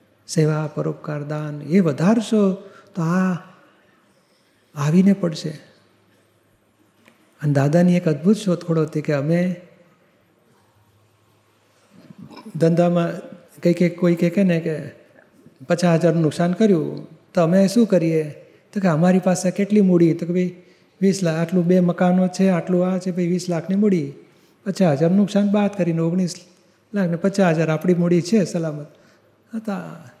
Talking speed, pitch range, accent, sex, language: 130 wpm, 160-195 Hz, native, male, Gujarati